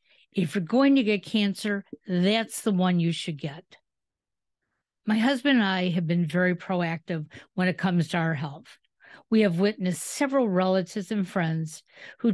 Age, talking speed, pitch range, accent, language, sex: 50-69, 165 wpm, 175-220 Hz, American, English, female